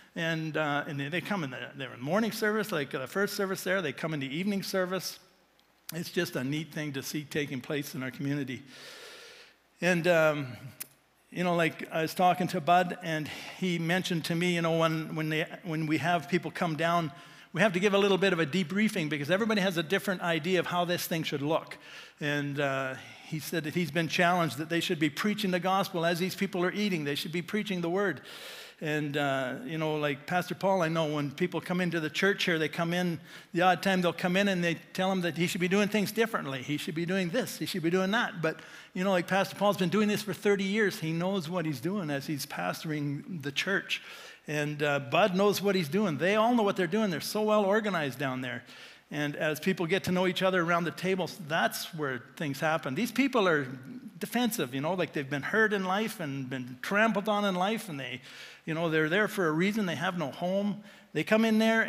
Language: English